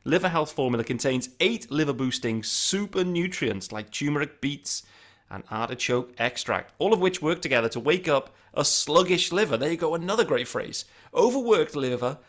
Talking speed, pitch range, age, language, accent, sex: 160 wpm, 115-155 Hz, 30-49, English, British, male